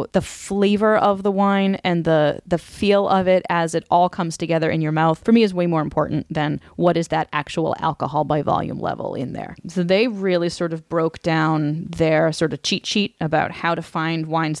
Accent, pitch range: American, 150-185 Hz